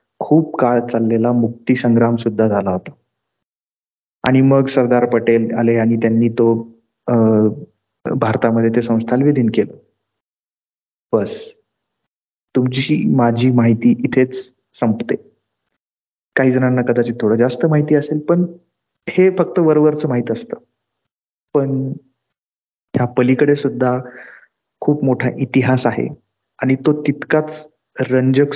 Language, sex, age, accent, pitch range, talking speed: Marathi, male, 30-49, native, 115-135 Hz, 70 wpm